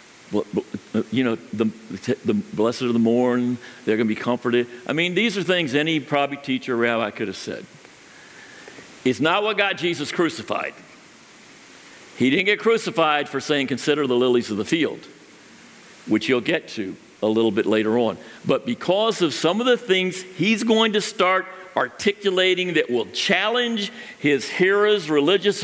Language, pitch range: English, 125-190 Hz